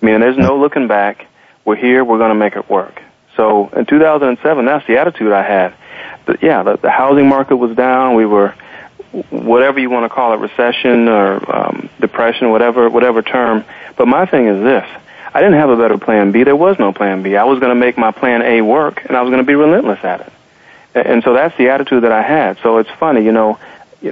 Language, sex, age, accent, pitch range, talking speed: English, male, 40-59, American, 110-125 Hz, 225 wpm